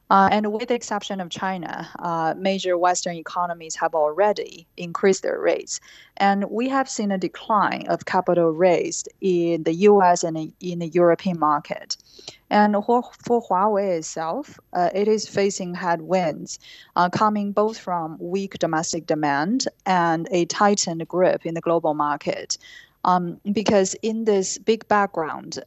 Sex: female